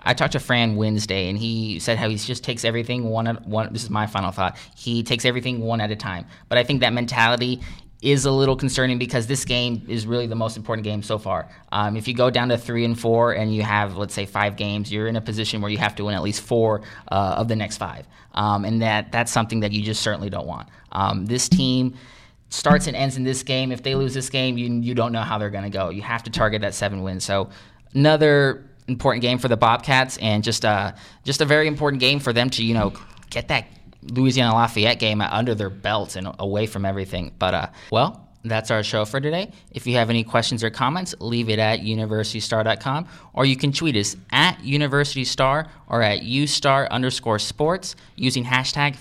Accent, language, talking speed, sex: American, English, 230 wpm, male